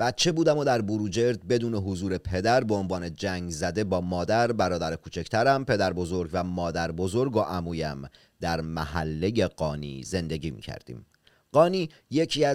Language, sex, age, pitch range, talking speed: Persian, male, 30-49, 90-130 Hz, 145 wpm